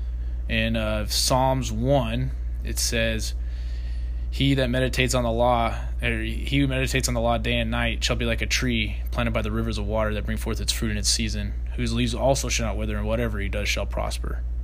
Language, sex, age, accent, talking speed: English, male, 20-39, American, 215 wpm